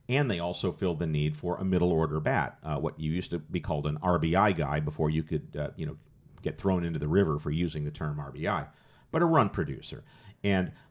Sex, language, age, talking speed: male, English, 50-69, 225 wpm